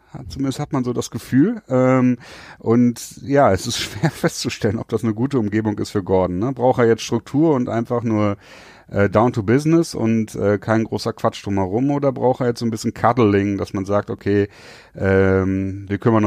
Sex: male